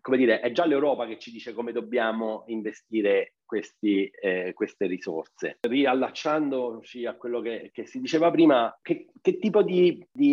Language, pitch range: Italian, 115-175 Hz